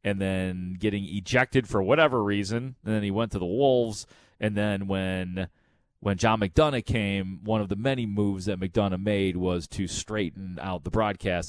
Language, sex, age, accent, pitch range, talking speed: English, male, 30-49, American, 90-115 Hz, 185 wpm